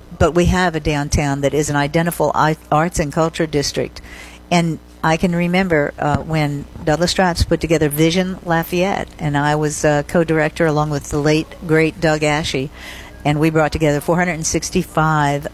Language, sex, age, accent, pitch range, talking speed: English, female, 50-69, American, 145-175 Hz, 160 wpm